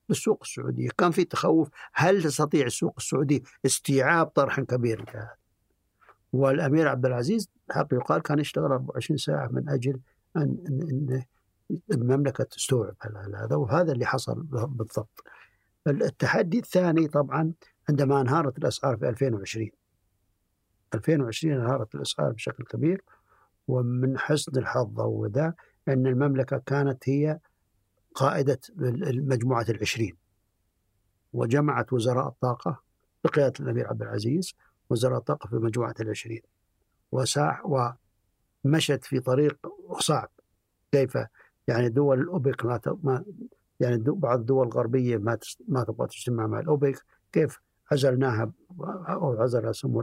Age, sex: 60-79, male